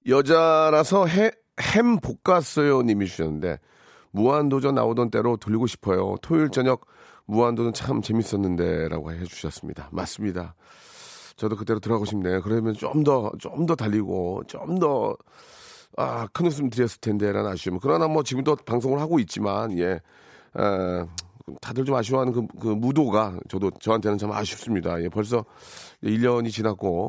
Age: 40-59